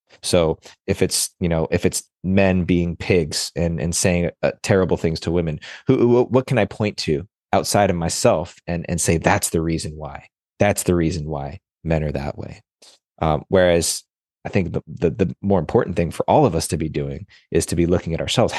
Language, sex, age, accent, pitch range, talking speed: English, male, 30-49, American, 85-100 Hz, 210 wpm